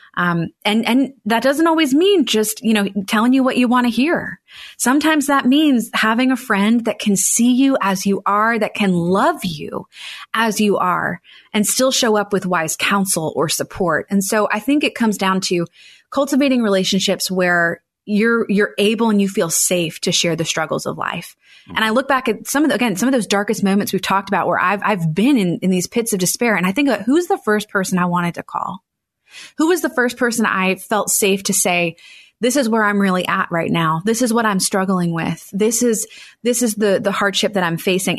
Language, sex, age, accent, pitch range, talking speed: English, female, 30-49, American, 190-235 Hz, 225 wpm